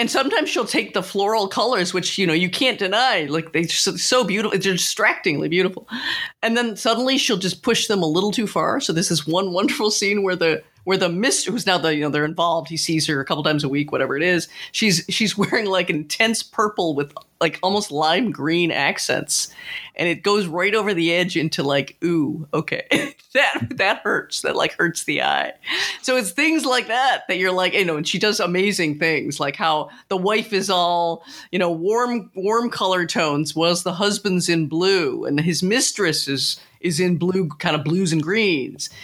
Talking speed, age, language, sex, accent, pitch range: 210 wpm, 40-59, English, female, American, 160-210 Hz